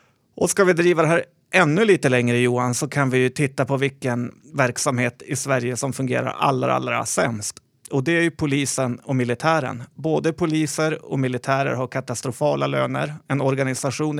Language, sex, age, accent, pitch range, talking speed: Swedish, male, 30-49, native, 130-150 Hz, 175 wpm